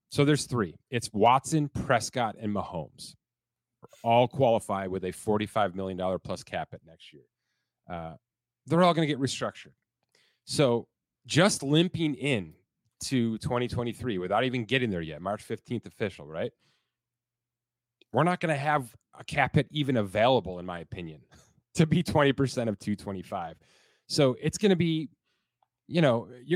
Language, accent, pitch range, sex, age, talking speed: English, American, 105-140 Hz, male, 30-49, 150 wpm